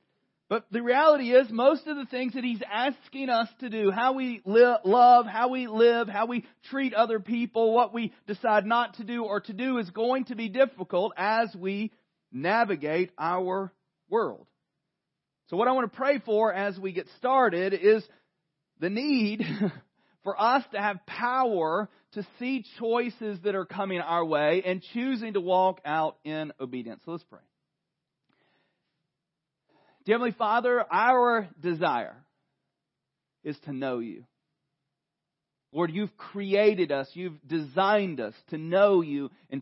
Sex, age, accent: male, 40-59, American